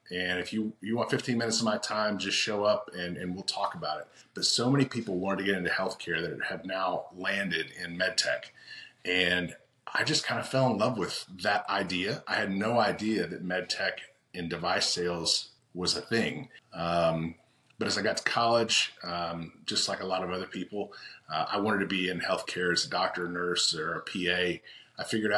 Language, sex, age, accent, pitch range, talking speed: English, male, 30-49, American, 90-110 Hz, 215 wpm